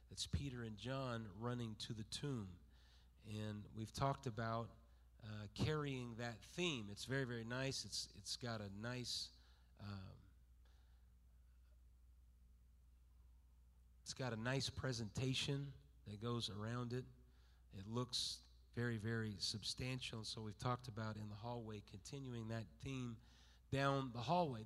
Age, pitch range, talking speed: 40-59, 100-130 Hz, 130 wpm